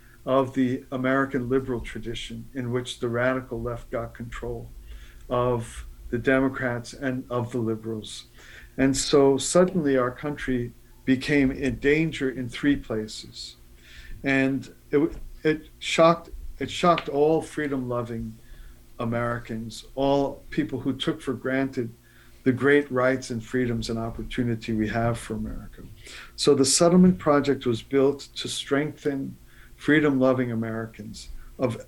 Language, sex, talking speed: English, male, 130 wpm